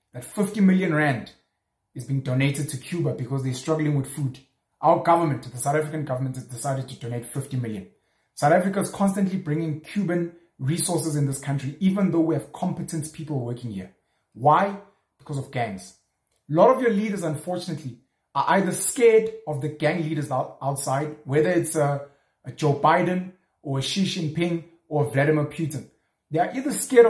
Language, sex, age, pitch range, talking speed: English, male, 30-49, 140-185 Hz, 170 wpm